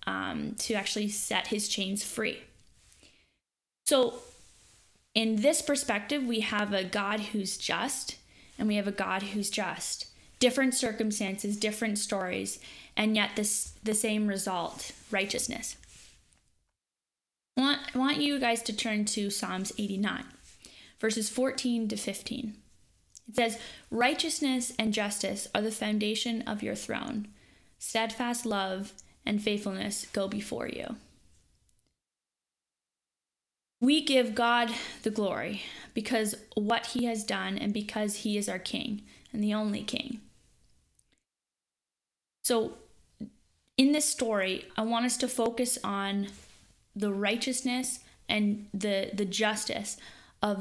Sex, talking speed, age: female, 125 wpm, 10-29